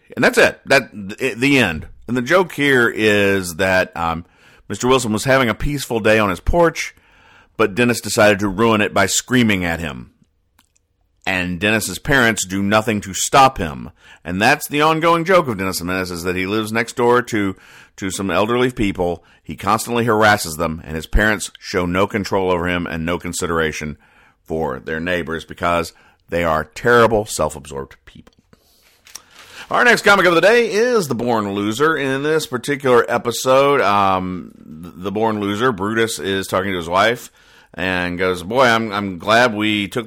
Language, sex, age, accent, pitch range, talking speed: English, male, 50-69, American, 90-120 Hz, 175 wpm